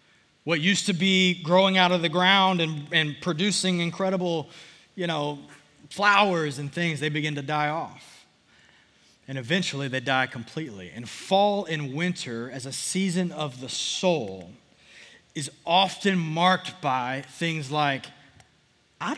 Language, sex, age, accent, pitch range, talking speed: English, male, 30-49, American, 160-225 Hz, 140 wpm